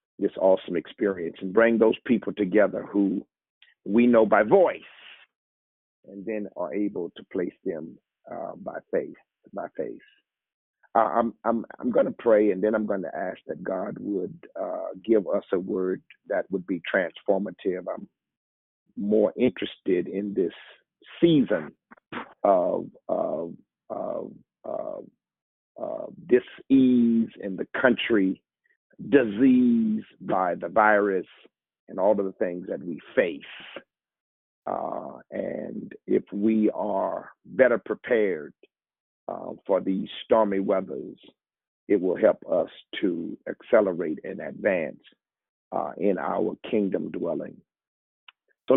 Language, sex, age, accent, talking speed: English, male, 50-69, American, 125 wpm